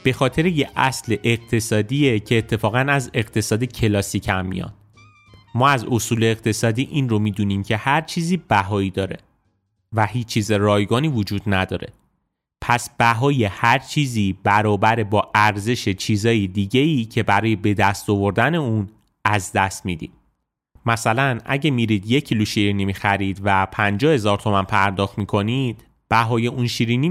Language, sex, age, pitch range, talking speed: Persian, male, 30-49, 105-125 Hz, 140 wpm